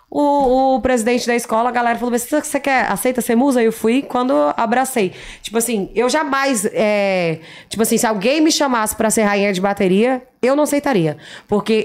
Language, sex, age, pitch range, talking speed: Portuguese, female, 20-39, 200-255 Hz, 190 wpm